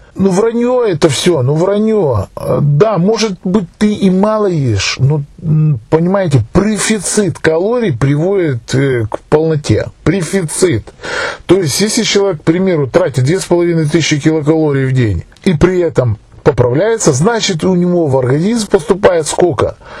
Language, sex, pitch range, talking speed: Russian, male, 130-195 Hz, 130 wpm